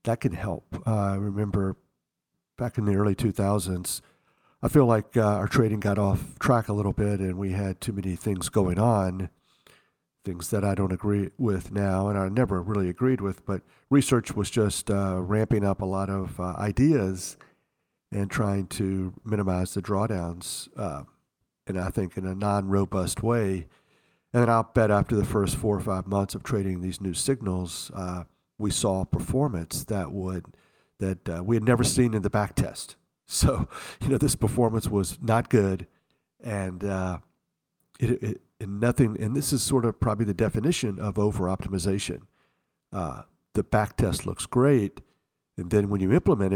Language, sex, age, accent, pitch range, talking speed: English, male, 50-69, American, 95-115 Hz, 175 wpm